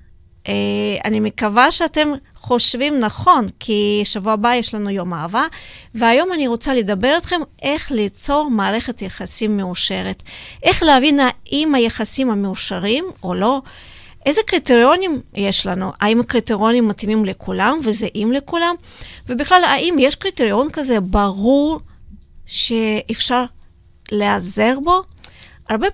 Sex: female